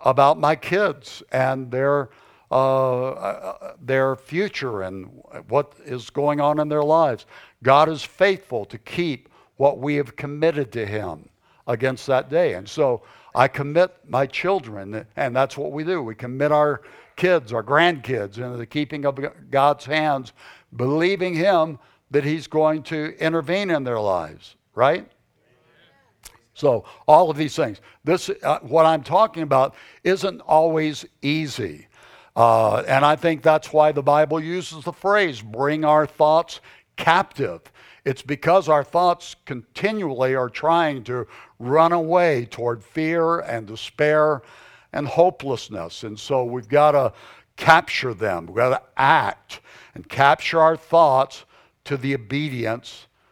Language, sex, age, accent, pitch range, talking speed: English, male, 60-79, American, 130-160 Hz, 145 wpm